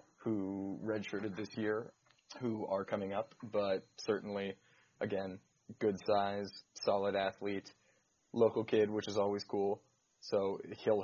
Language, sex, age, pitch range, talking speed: English, male, 20-39, 95-105 Hz, 125 wpm